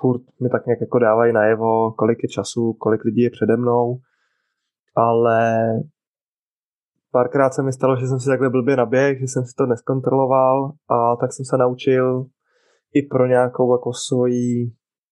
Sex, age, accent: male, 20-39, native